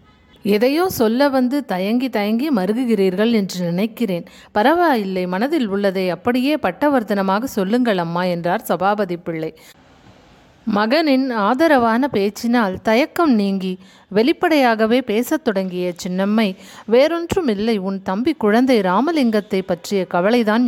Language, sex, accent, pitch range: Tamil, female, native, 190-255 Hz